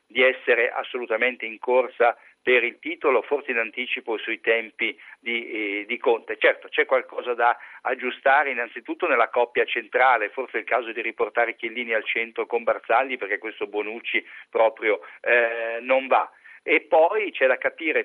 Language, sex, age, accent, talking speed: Italian, male, 50-69, native, 160 wpm